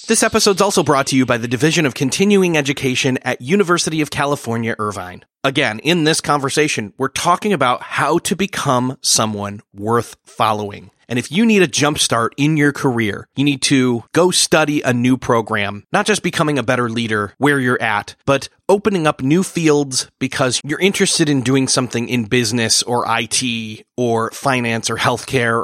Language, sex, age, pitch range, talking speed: English, male, 30-49, 120-170 Hz, 180 wpm